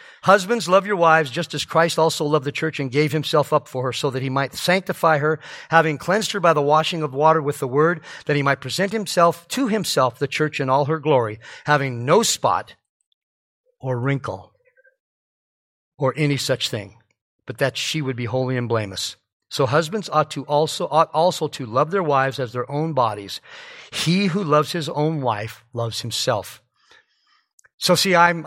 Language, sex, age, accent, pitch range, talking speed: English, male, 50-69, American, 135-180 Hz, 190 wpm